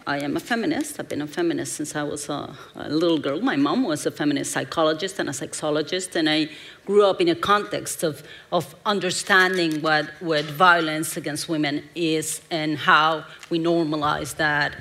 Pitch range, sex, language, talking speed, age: 155-205 Hz, female, English, 180 wpm, 40-59